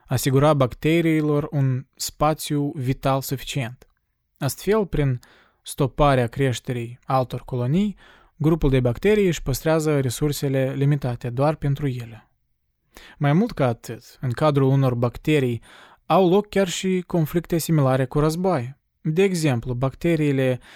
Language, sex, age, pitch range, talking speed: Romanian, male, 20-39, 130-165 Hz, 120 wpm